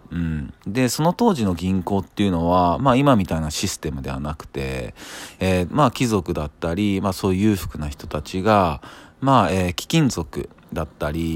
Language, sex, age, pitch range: Japanese, male, 40-59, 85-120 Hz